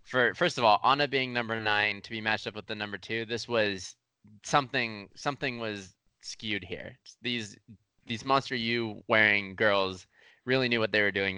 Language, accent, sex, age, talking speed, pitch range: English, American, male, 20-39, 185 wpm, 100-120 Hz